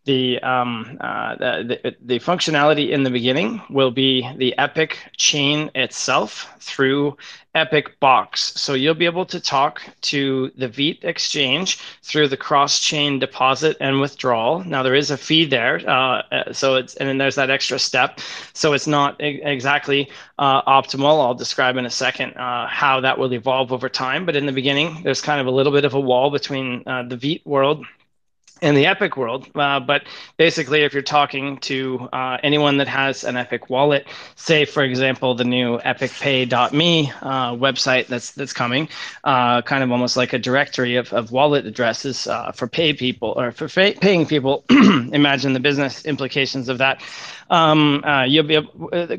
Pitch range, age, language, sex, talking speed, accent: 130-150 Hz, 20-39, English, male, 180 wpm, American